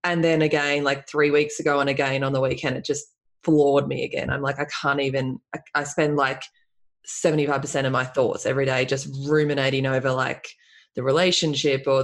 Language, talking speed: English, 195 wpm